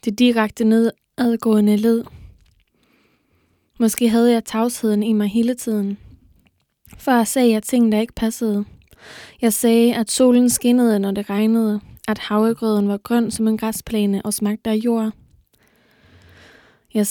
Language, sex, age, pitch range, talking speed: Danish, female, 20-39, 215-235 Hz, 145 wpm